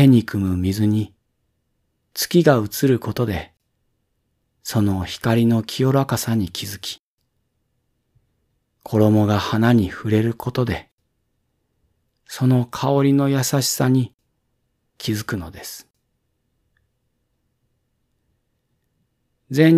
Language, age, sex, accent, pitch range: Japanese, 40-59, male, native, 100-125 Hz